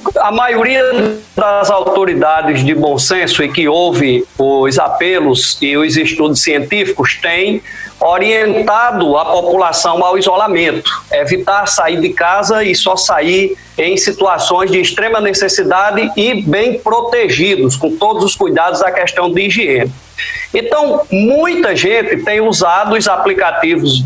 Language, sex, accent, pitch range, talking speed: Portuguese, male, Brazilian, 175-245 Hz, 130 wpm